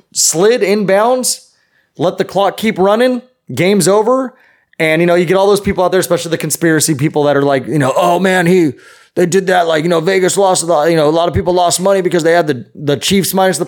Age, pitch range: 30-49, 155-205 Hz